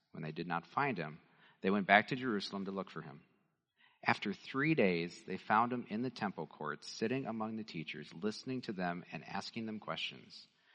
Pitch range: 95-135 Hz